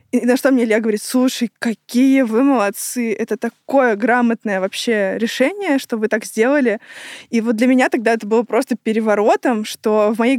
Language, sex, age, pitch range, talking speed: Russian, female, 20-39, 220-275 Hz, 180 wpm